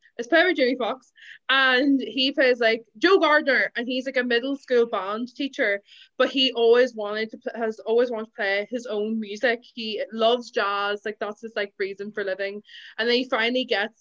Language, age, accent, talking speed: English, 20-39, Irish, 200 wpm